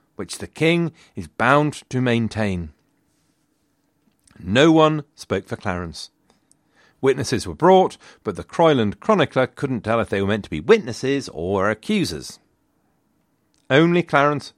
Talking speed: 130 wpm